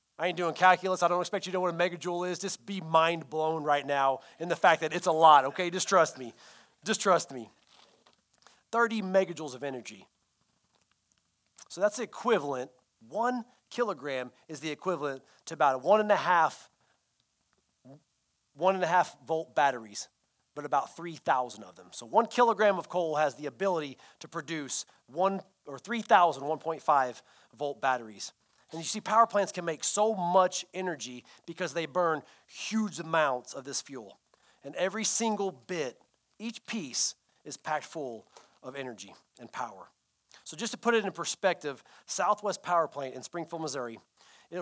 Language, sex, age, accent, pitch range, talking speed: English, male, 30-49, American, 135-185 Hz, 155 wpm